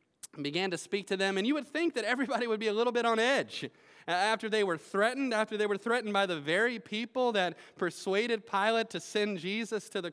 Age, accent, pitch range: 30-49, American, 170-235 Hz